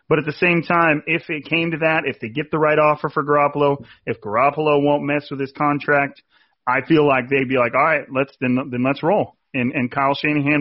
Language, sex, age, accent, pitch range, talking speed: English, male, 30-49, American, 135-165 Hz, 240 wpm